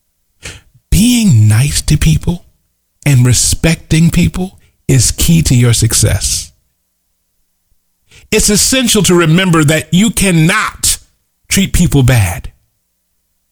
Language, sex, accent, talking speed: English, male, American, 100 wpm